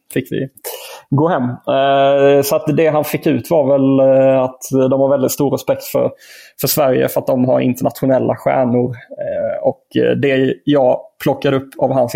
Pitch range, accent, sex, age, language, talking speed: 130-155 Hz, native, male, 20-39, Swedish, 170 wpm